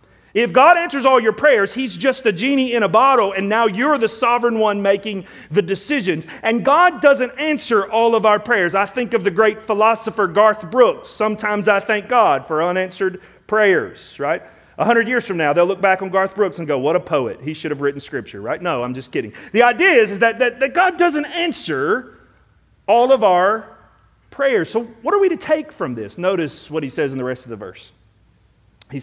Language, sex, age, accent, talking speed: English, male, 40-59, American, 215 wpm